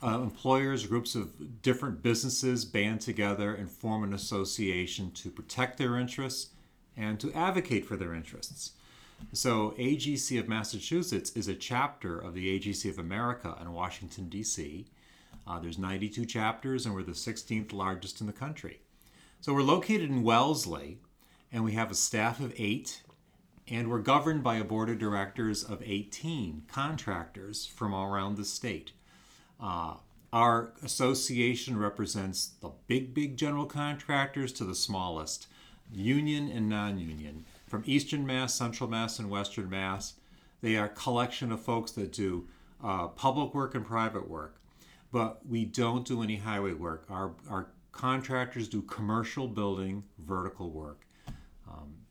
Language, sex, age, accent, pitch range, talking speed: English, male, 40-59, American, 100-125 Hz, 150 wpm